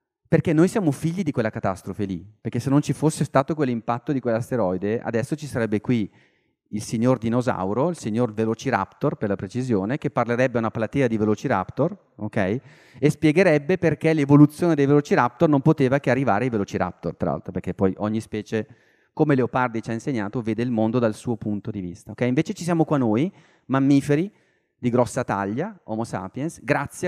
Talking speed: 180 wpm